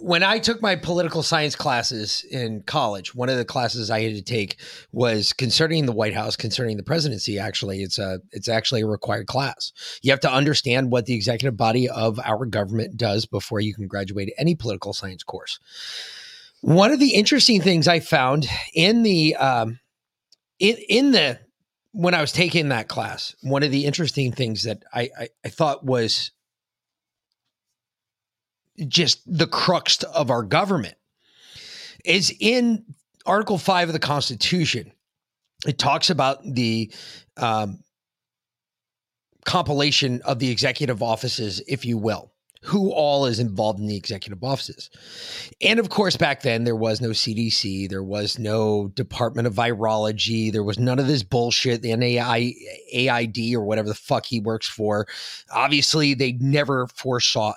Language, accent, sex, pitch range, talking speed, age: English, American, male, 110-145 Hz, 160 wpm, 30-49